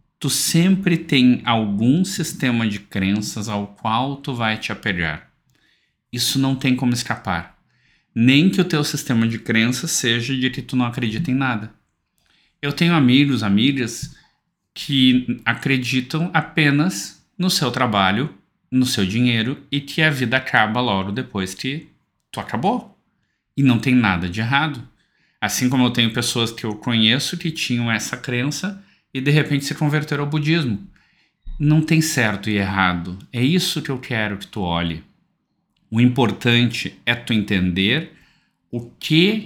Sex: male